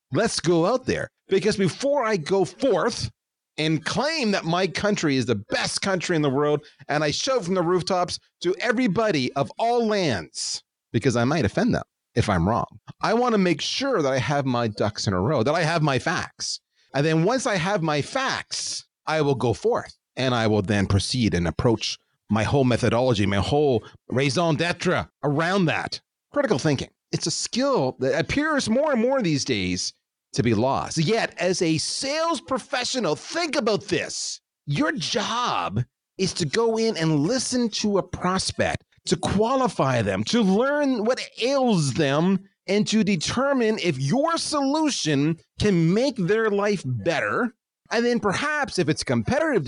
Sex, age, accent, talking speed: male, 40-59, American, 175 wpm